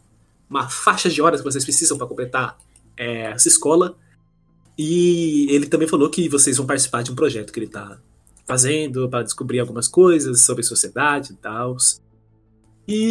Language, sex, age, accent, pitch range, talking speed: Portuguese, male, 20-39, Brazilian, 120-155 Hz, 165 wpm